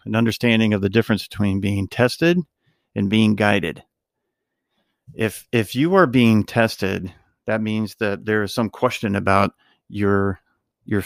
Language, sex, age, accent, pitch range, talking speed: English, male, 50-69, American, 95-105 Hz, 145 wpm